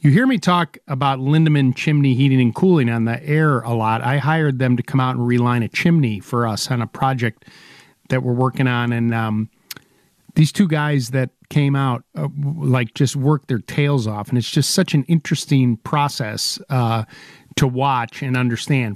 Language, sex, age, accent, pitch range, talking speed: English, male, 40-59, American, 120-145 Hz, 195 wpm